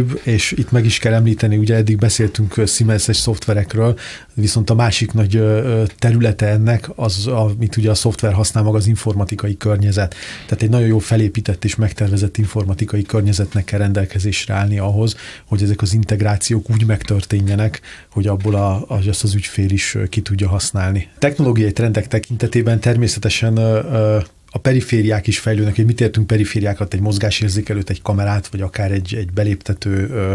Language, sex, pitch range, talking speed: Hungarian, male, 100-115 Hz, 155 wpm